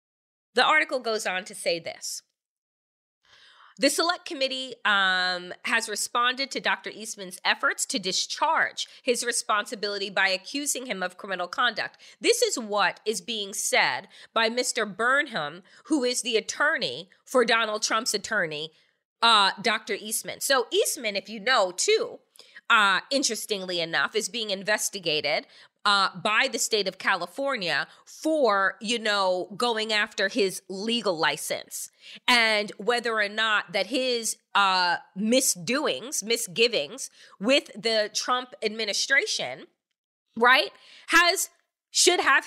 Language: English